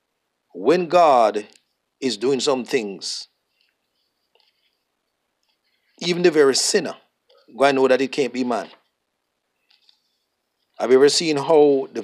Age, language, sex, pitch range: 50-69, English, male, 130-165 Hz